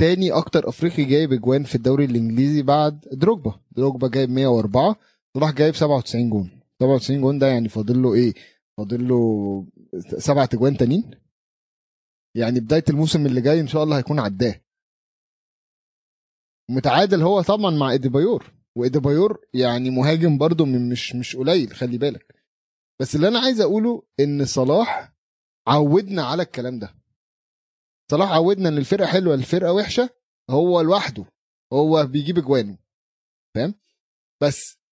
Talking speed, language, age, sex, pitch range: 135 wpm, Arabic, 30-49, male, 125-165 Hz